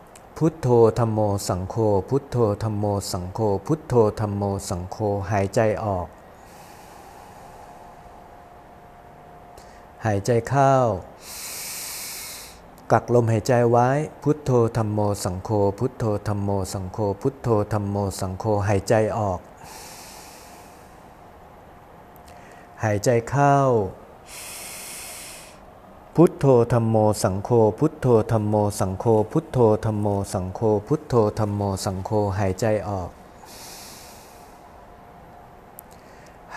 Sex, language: male, Thai